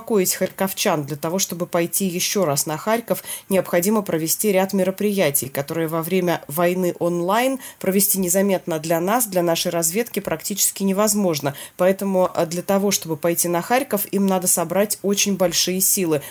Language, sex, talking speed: Russian, female, 145 wpm